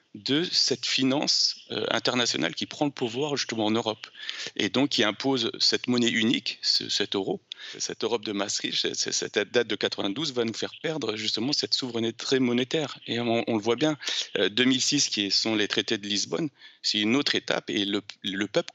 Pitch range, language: 110-135 Hz, French